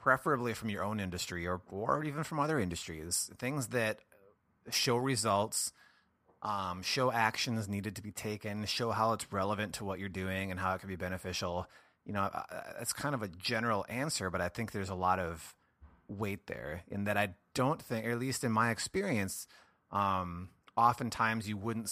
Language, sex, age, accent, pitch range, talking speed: English, male, 30-49, American, 95-115 Hz, 185 wpm